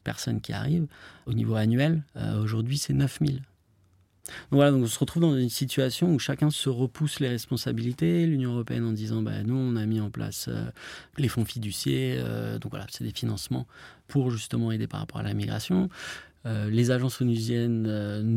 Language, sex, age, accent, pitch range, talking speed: French, male, 30-49, French, 110-135 Hz, 195 wpm